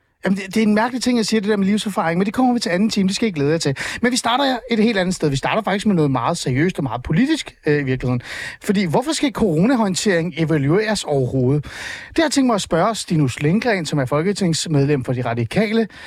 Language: Danish